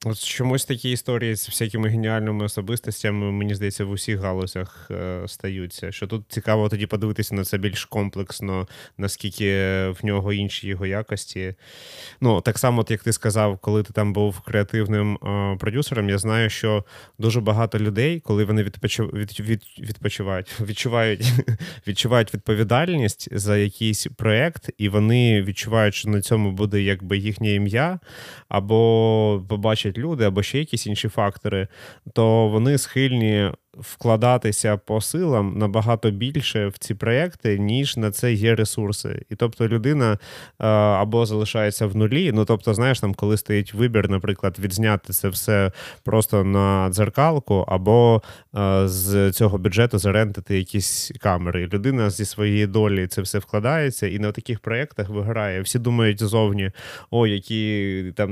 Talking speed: 140 wpm